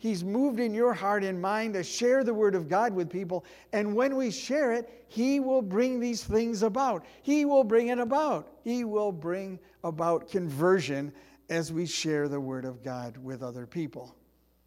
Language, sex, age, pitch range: Portuguese, male, 60-79, 150-220 Hz